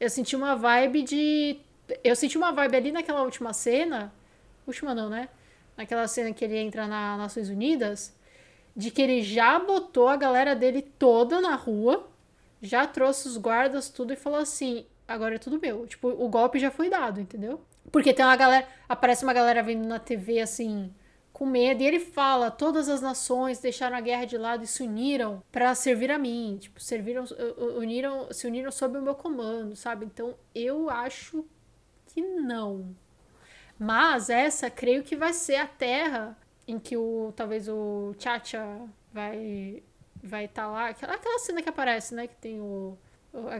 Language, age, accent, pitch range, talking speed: Portuguese, 10-29, Brazilian, 225-275 Hz, 180 wpm